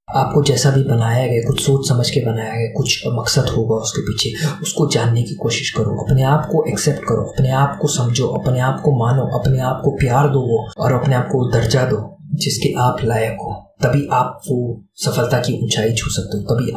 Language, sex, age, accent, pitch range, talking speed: Hindi, male, 20-39, native, 120-140 Hz, 215 wpm